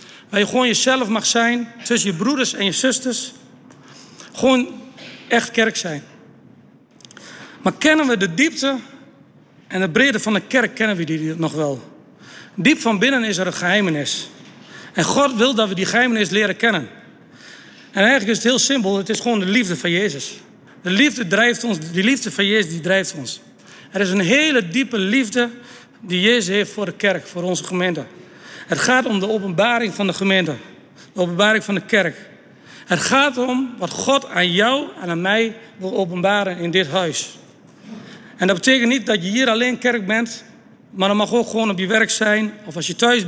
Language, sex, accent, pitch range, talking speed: Dutch, male, Dutch, 190-250 Hz, 190 wpm